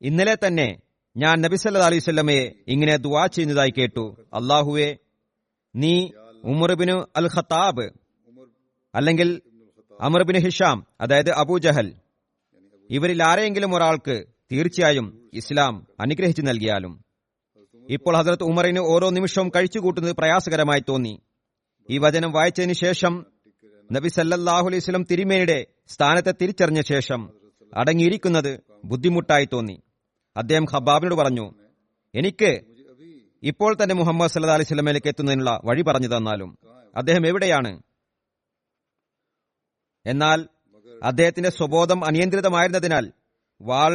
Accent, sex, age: native, male, 30-49